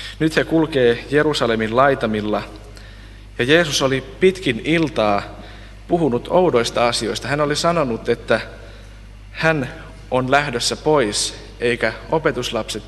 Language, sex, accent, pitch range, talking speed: Finnish, male, native, 105-130 Hz, 105 wpm